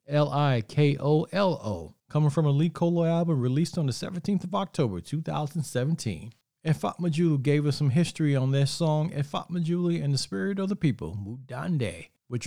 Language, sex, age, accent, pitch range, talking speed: English, male, 40-59, American, 135-165 Hz, 160 wpm